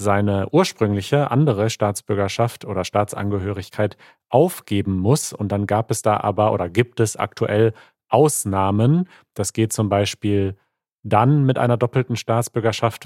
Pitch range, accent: 100-125 Hz, German